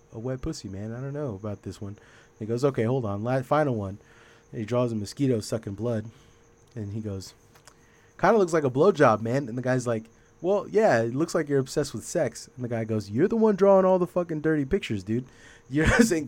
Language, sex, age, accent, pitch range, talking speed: English, male, 30-49, American, 105-130 Hz, 230 wpm